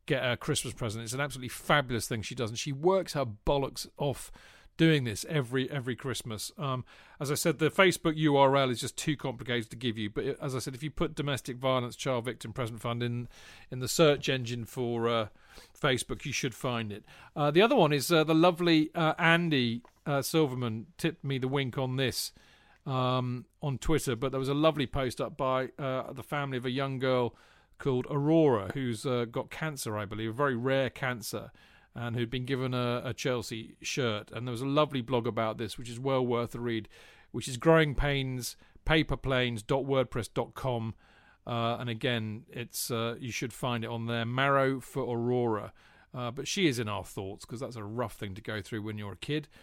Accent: British